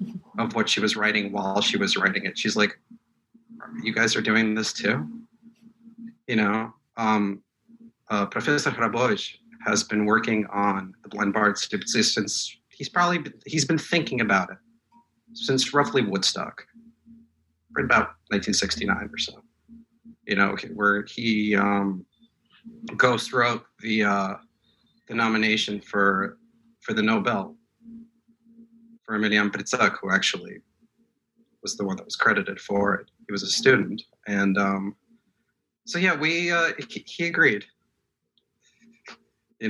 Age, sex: 40-59, male